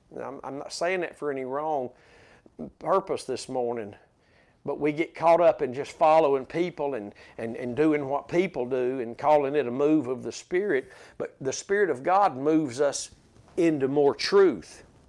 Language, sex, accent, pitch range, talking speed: English, male, American, 135-200 Hz, 175 wpm